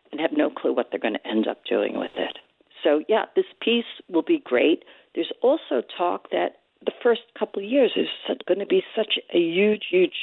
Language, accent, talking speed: English, American, 215 wpm